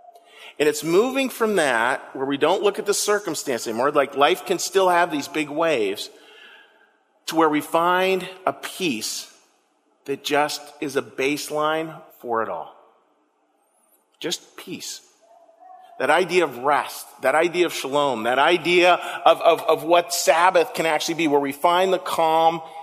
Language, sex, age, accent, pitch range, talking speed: English, male, 40-59, American, 150-205 Hz, 160 wpm